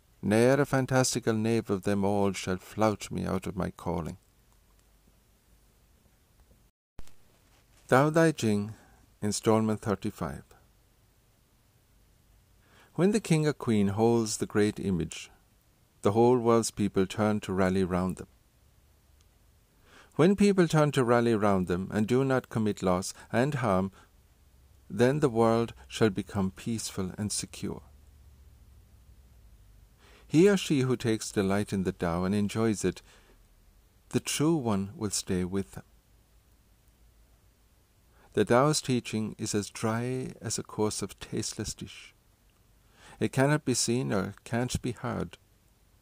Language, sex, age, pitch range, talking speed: English, male, 50-69, 95-115 Hz, 130 wpm